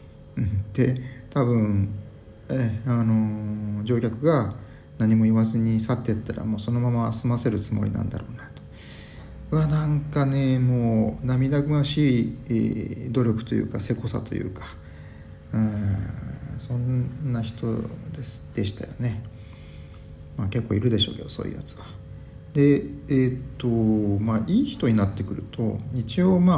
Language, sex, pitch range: Japanese, male, 105-130 Hz